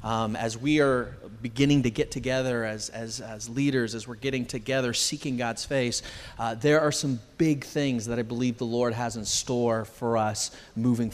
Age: 30-49